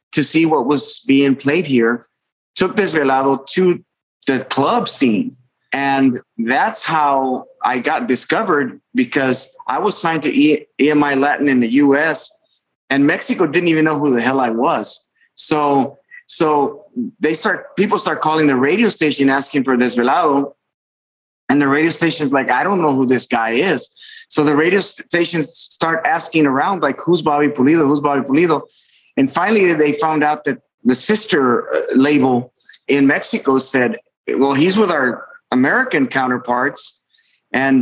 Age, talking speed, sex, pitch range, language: 30-49, 155 wpm, male, 140-195 Hz, English